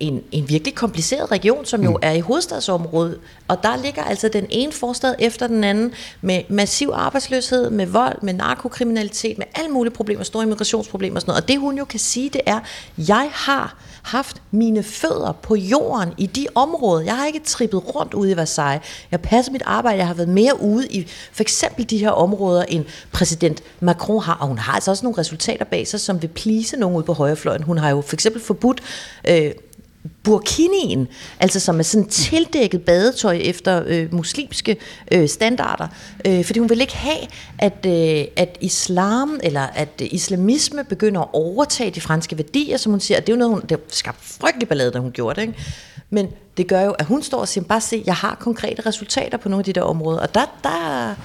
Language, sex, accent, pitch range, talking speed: Danish, female, native, 175-235 Hz, 205 wpm